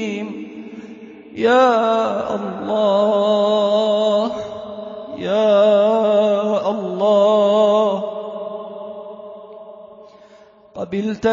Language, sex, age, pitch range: Arabic, male, 20-39, 200-230 Hz